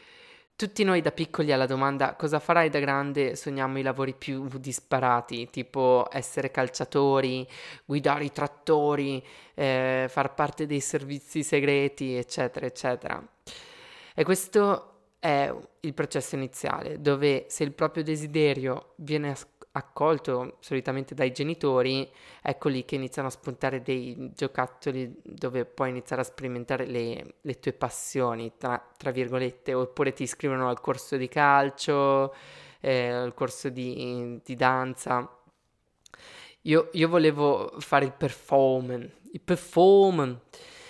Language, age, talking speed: Italian, 20-39, 125 wpm